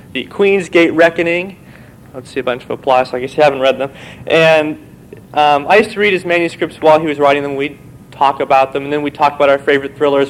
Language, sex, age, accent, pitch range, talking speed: English, male, 30-49, American, 130-170 Hz, 245 wpm